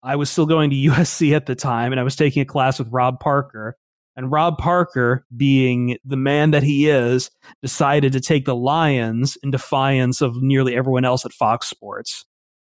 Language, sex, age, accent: English, male, 30-49, American